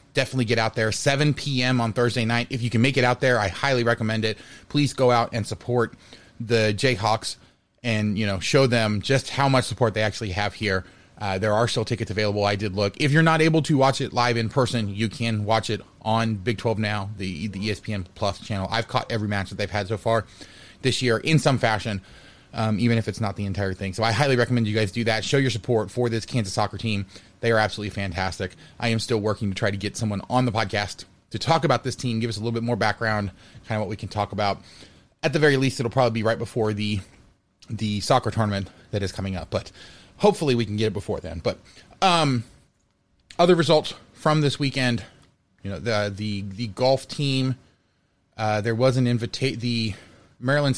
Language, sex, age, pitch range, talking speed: English, male, 30-49, 105-125 Hz, 225 wpm